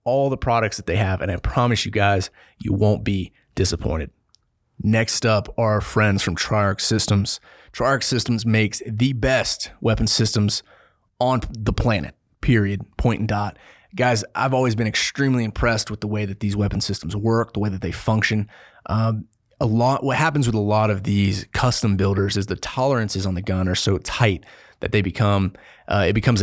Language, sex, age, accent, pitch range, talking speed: English, male, 30-49, American, 95-110 Hz, 190 wpm